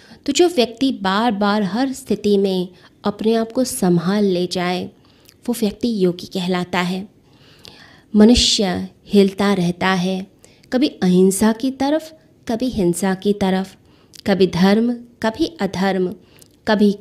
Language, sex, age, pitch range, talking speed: Hindi, female, 20-39, 185-225 Hz, 125 wpm